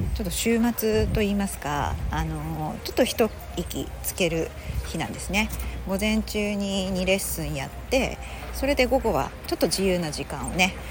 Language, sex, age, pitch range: Japanese, female, 40-59, 155-230 Hz